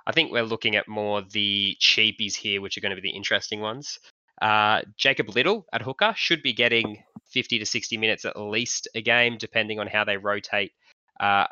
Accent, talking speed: Australian, 205 wpm